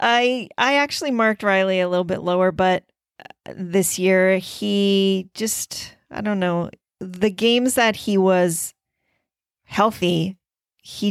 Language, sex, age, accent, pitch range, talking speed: English, female, 40-59, American, 175-205 Hz, 130 wpm